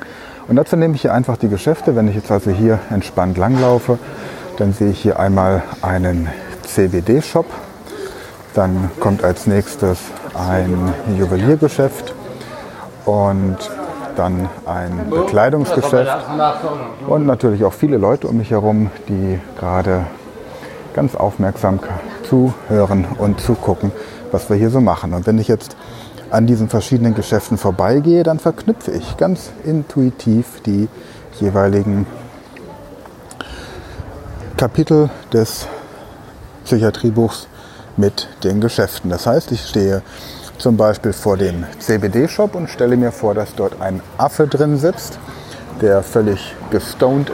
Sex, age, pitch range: male, 30-49, 95-125 Hz